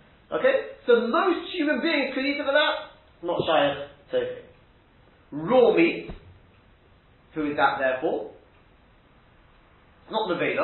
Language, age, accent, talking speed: English, 40-59, British, 130 wpm